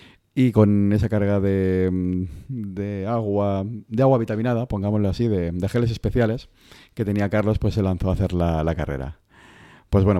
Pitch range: 90-105 Hz